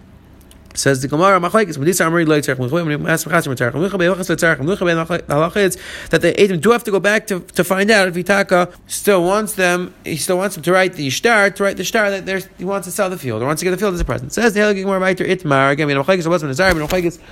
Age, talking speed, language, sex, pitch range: 30-49, 195 wpm, English, male, 150-185 Hz